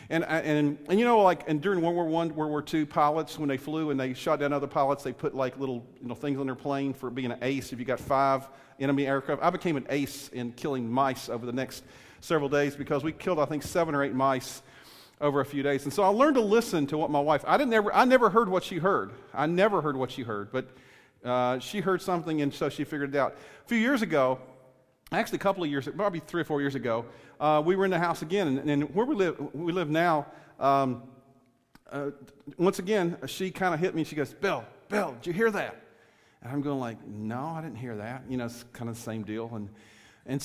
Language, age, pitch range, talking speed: English, 40-59, 130-170 Hz, 245 wpm